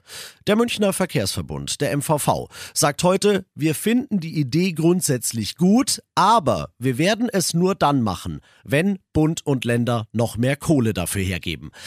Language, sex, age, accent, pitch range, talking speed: German, male, 40-59, German, 125-175 Hz, 145 wpm